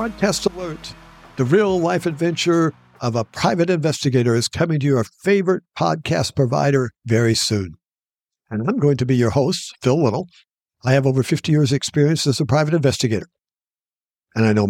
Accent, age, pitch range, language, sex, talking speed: American, 60-79, 120-150 Hz, English, male, 165 wpm